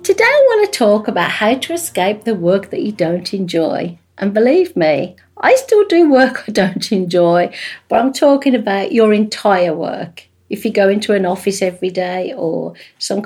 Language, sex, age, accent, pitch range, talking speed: English, female, 50-69, British, 180-240 Hz, 190 wpm